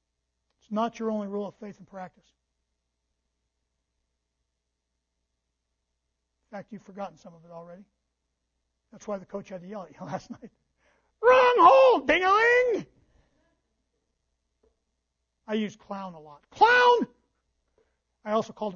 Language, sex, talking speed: English, male, 130 wpm